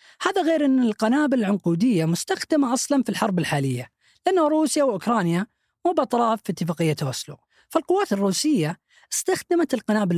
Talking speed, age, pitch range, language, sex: 130 wpm, 20-39, 185-290 Hz, Arabic, female